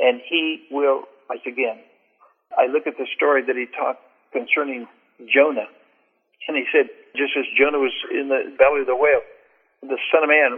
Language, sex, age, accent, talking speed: English, male, 60-79, American, 180 wpm